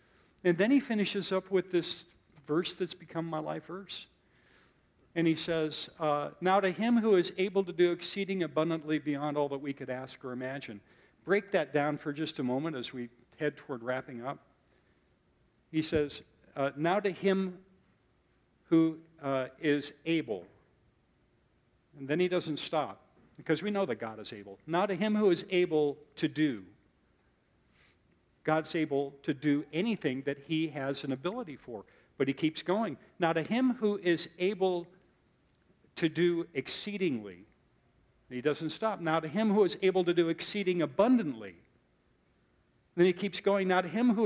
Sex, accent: male, American